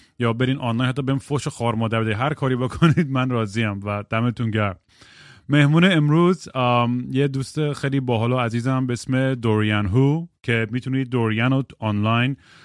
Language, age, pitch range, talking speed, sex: Persian, 30-49, 110-135 Hz, 160 wpm, male